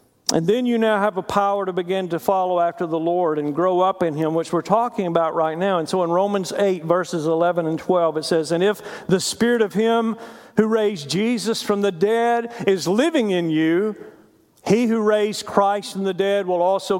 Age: 50-69